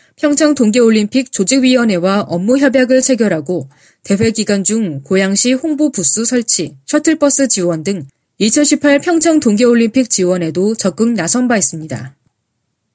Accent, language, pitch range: native, Korean, 175-255 Hz